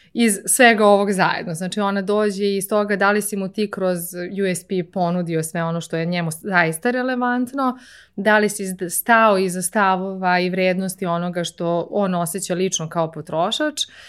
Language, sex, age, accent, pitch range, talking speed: English, female, 20-39, Croatian, 185-225 Hz, 165 wpm